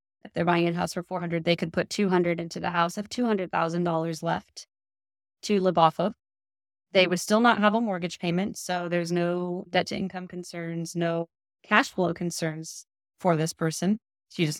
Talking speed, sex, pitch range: 185 wpm, female, 170-195 Hz